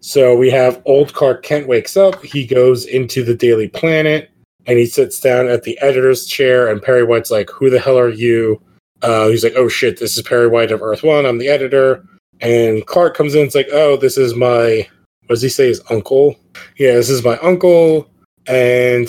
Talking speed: 210 wpm